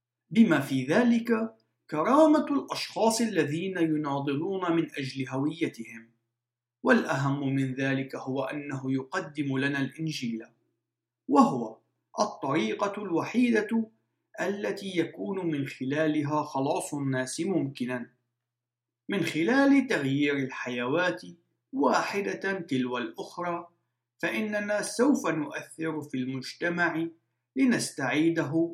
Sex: male